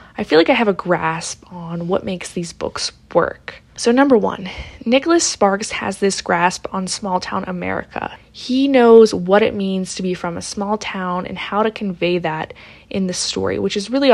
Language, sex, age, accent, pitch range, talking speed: English, female, 20-39, American, 185-235 Hz, 195 wpm